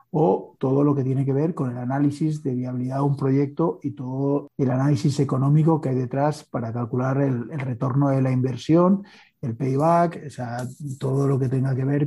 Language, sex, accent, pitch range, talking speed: Spanish, male, Spanish, 130-150 Hz, 205 wpm